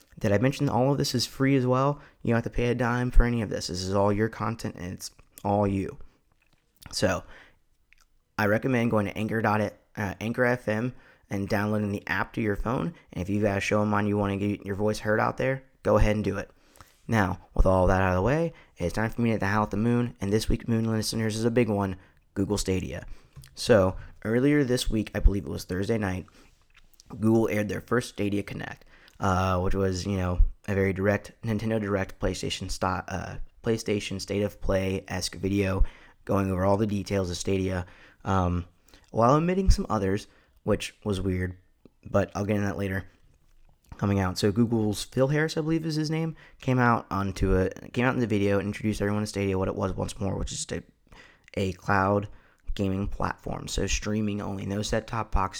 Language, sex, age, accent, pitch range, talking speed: English, male, 20-39, American, 95-110 Hz, 210 wpm